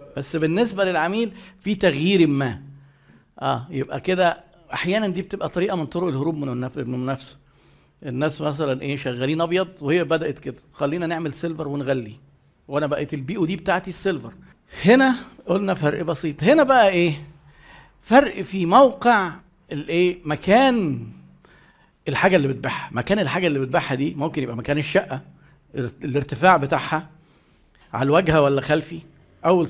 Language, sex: Arabic, male